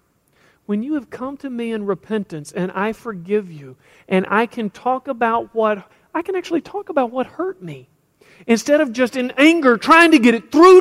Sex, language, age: male, English, 40-59